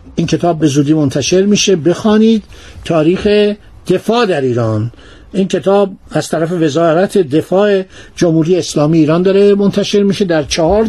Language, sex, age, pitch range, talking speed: Persian, male, 60-79, 165-220 Hz, 140 wpm